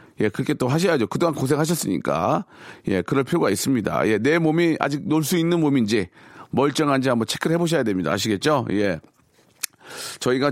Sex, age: male, 40-59